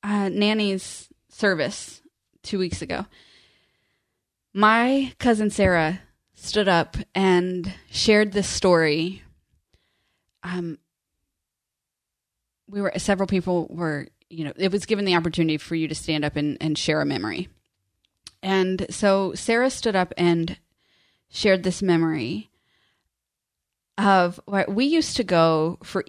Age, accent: 20-39, American